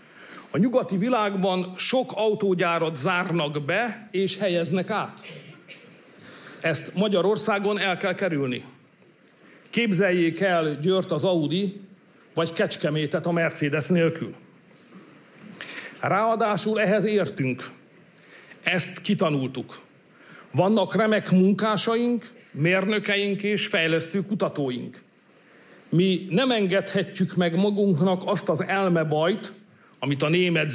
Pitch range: 165-205 Hz